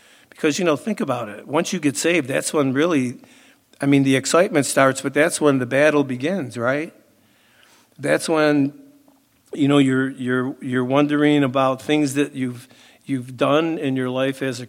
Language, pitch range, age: English, 130-150 Hz, 50-69